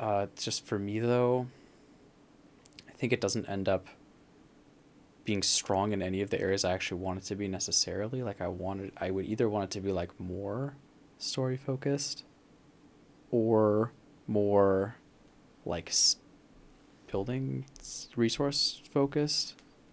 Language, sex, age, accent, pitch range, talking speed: English, male, 20-39, American, 95-125 Hz, 135 wpm